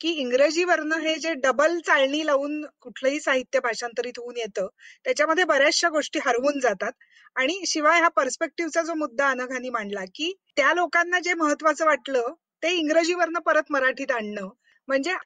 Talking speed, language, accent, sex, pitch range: 145 wpm, Marathi, native, female, 255-325 Hz